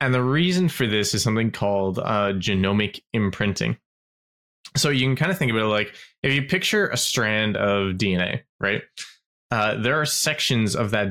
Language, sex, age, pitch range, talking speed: English, male, 20-39, 100-125 Hz, 185 wpm